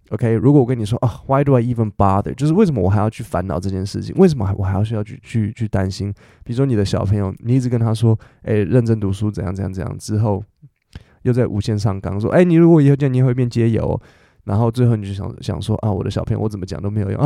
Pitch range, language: 100-125 Hz, Chinese